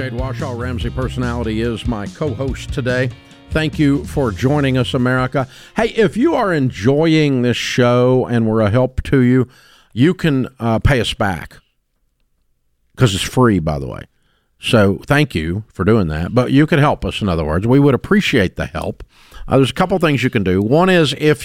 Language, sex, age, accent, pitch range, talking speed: English, male, 50-69, American, 110-135 Hz, 195 wpm